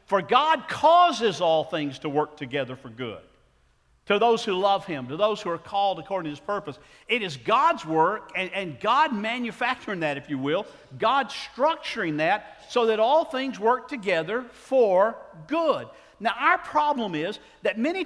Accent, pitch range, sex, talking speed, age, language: American, 180-260 Hz, male, 175 wpm, 50-69, English